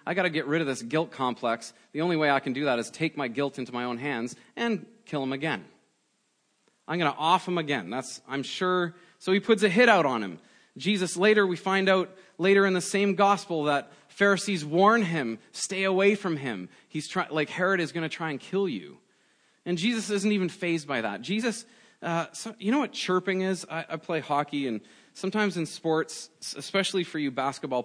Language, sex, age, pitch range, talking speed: English, male, 30-49, 135-185 Hz, 220 wpm